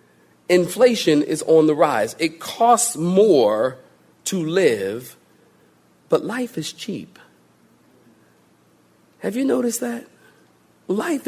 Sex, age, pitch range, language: male, 40-59, 125-195 Hz, English